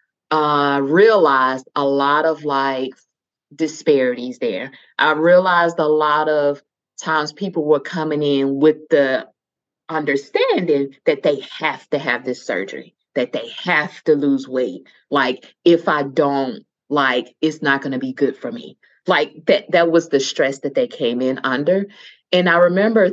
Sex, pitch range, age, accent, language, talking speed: female, 145-195 Hz, 30-49, American, English, 160 wpm